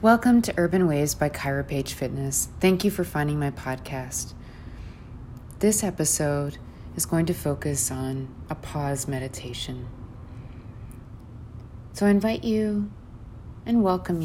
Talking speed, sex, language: 120 wpm, female, English